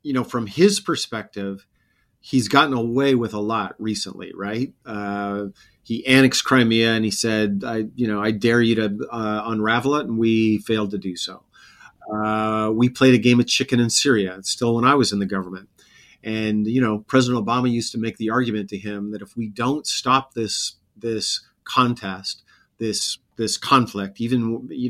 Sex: male